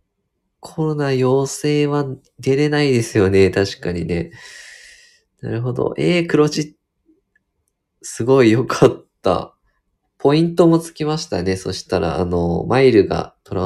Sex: male